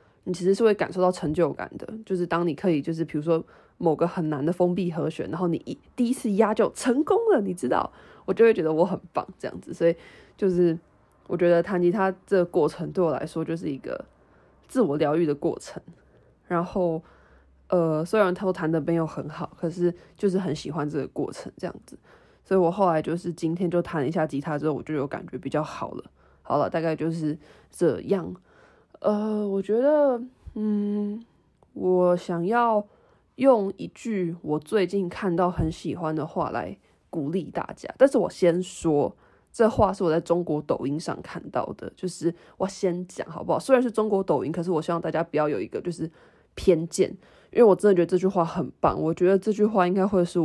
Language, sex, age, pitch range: Chinese, female, 20-39, 160-195 Hz